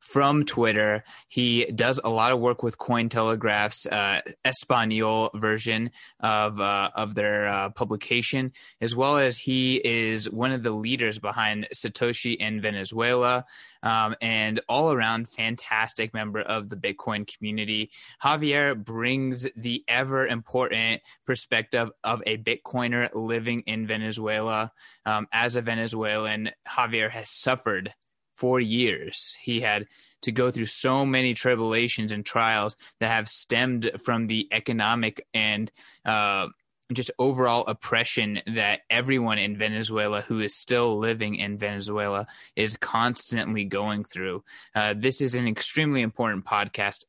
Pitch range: 105-120 Hz